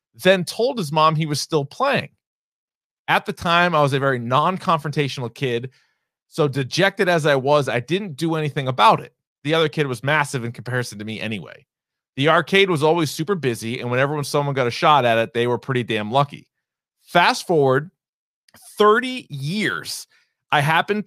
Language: English